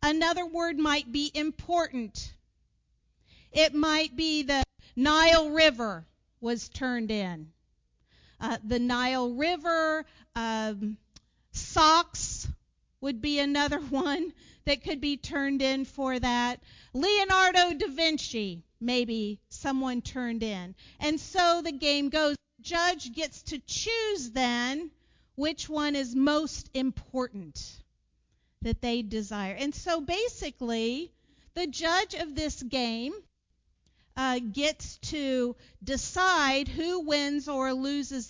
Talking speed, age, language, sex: 115 wpm, 50-69, English, female